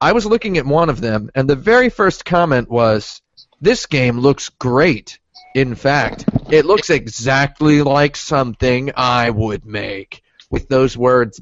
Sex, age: male, 30-49